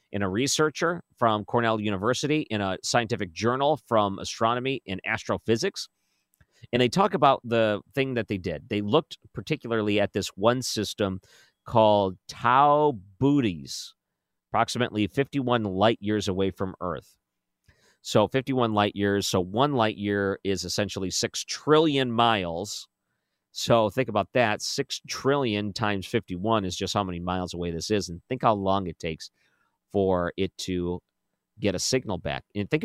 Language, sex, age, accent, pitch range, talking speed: English, male, 40-59, American, 95-120 Hz, 155 wpm